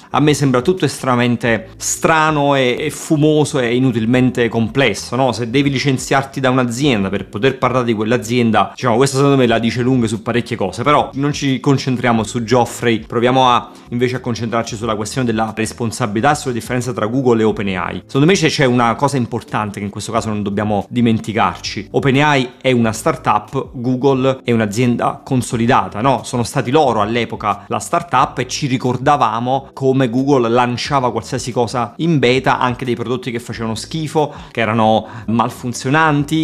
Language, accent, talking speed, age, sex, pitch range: Italian, native, 170 wpm, 30-49, male, 115-135 Hz